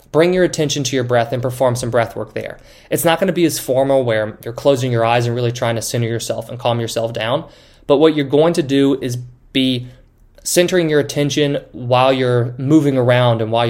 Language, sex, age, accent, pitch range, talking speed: English, male, 20-39, American, 120-150 Hz, 220 wpm